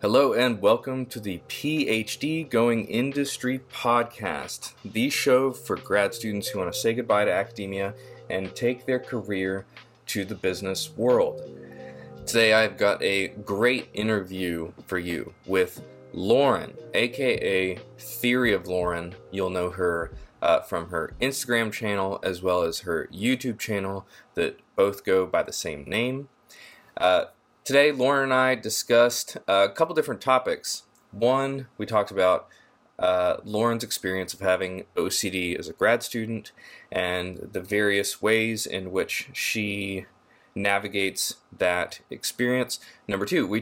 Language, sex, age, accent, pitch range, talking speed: English, male, 20-39, American, 95-125 Hz, 135 wpm